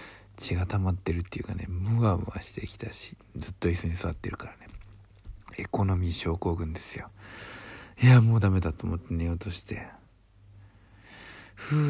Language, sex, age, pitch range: Japanese, male, 60-79, 95-110 Hz